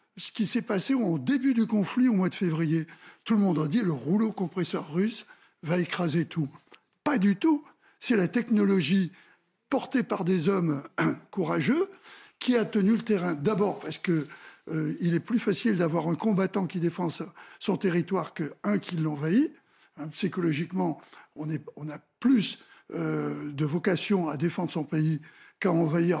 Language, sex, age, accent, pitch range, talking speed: French, male, 60-79, French, 165-225 Hz, 165 wpm